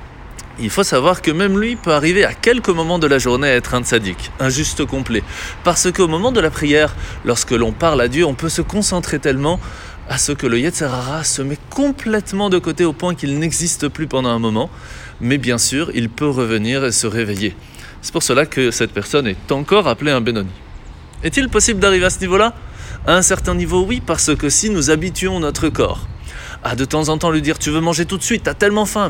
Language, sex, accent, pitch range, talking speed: French, male, French, 120-180 Hz, 225 wpm